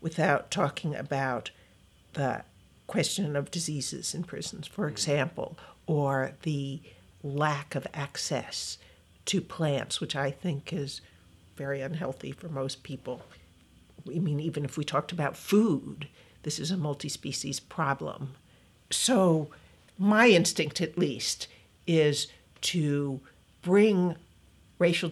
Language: English